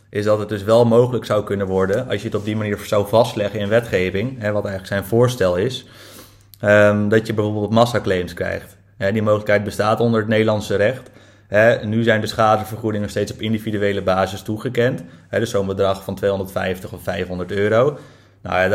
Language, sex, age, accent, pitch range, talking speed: Dutch, male, 30-49, Dutch, 100-115 Hz, 165 wpm